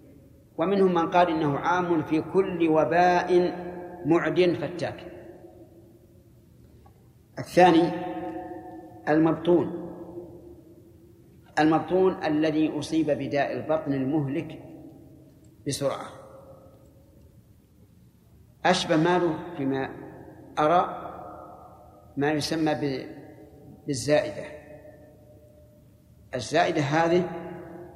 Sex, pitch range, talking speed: male, 130-170 Hz, 60 wpm